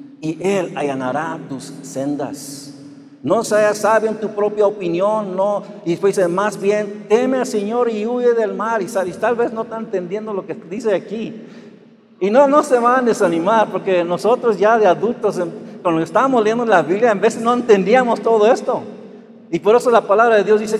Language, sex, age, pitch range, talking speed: Spanish, male, 60-79, 165-220 Hz, 195 wpm